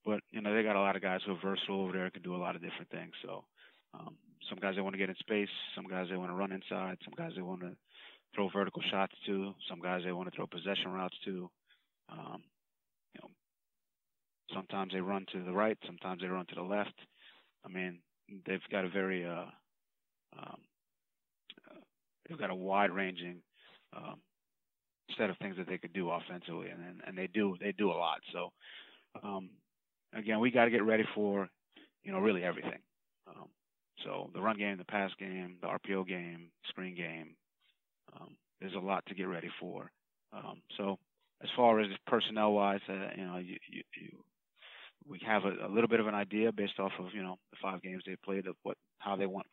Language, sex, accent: English, male, American